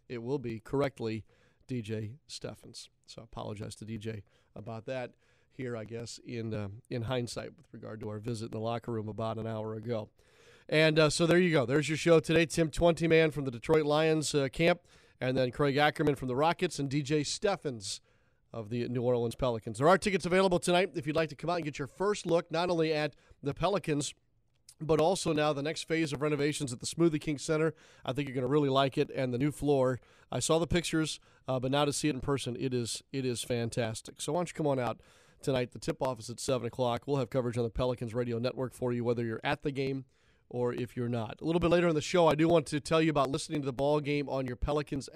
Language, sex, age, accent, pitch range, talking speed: English, male, 40-59, American, 120-155 Hz, 245 wpm